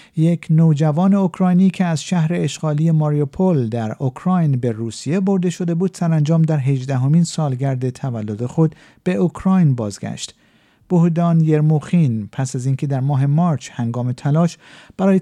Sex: male